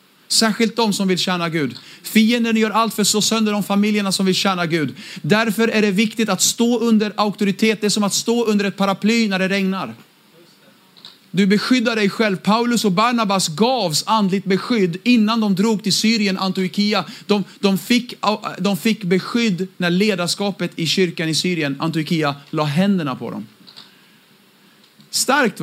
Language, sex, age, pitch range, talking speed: Swedish, male, 40-59, 165-215 Hz, 165 wpm